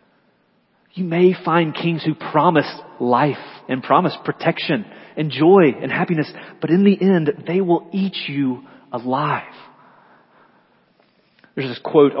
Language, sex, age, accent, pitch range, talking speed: English, male, 30-49, American, 130-180 Hz, 130 wpm